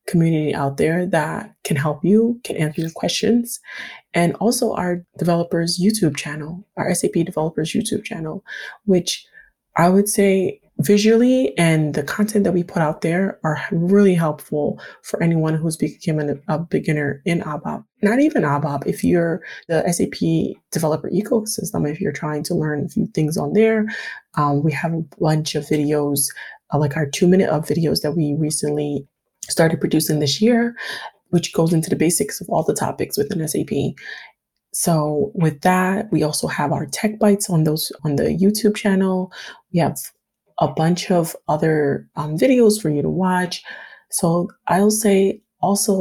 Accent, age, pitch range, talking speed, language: American, 20-39, 155-200 Hz, 165 wpm, English